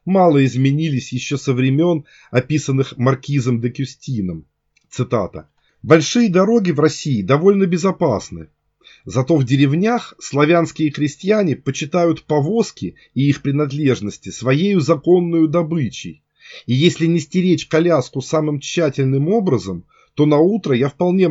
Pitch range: 130-175 Hz